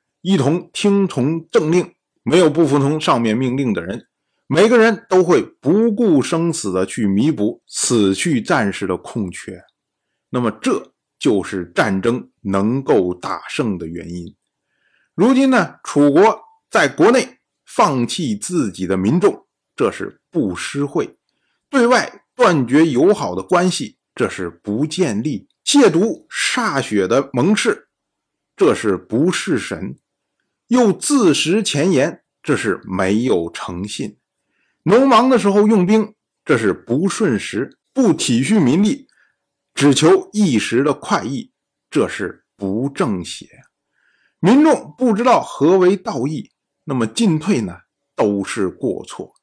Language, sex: Chinese, male